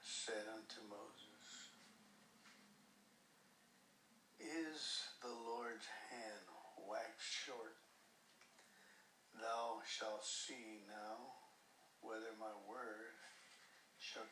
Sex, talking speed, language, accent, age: male, 70 wpm, English, American, 60-79